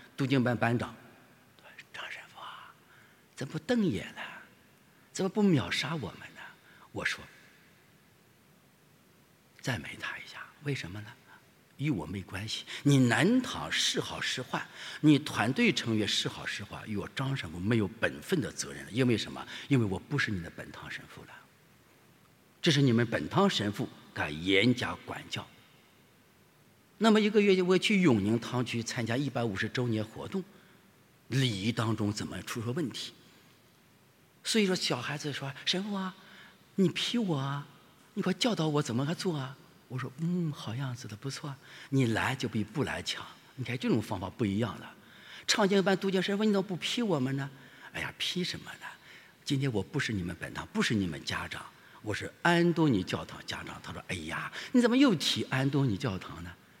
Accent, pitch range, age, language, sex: Chinese, 115-180 Hz, 50-69, English, male